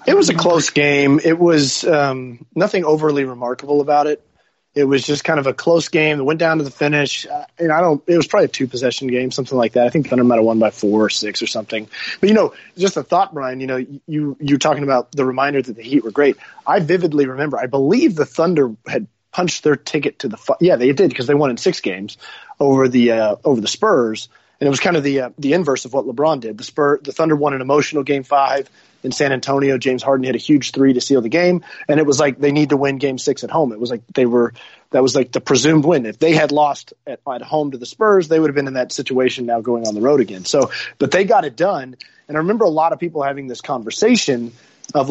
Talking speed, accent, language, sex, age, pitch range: 265 wpm, American, English, male, 30-49, 130-155 Hz